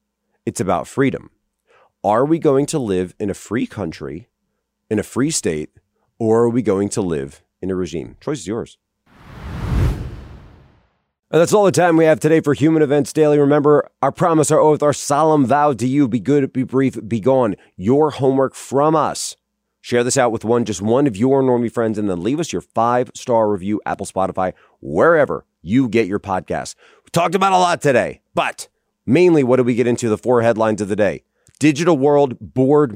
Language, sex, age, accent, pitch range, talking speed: English, male, 30-49, American, 110-145 Hz, 195 wpm